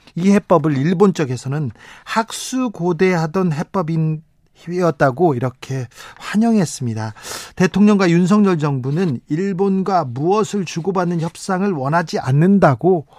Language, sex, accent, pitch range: Korean, male, native, 145-195 Hz